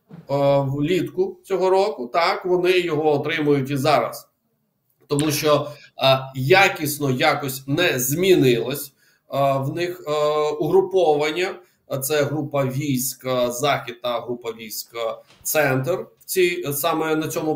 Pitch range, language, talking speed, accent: 130-160 Hz, Ukrainian, 120 wpm, native